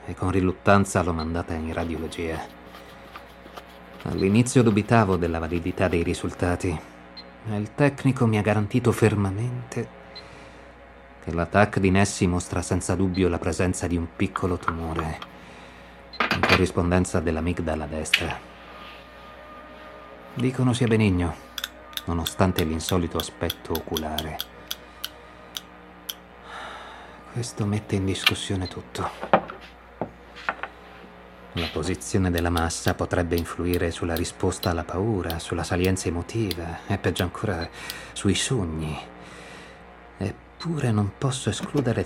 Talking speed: 105 wpm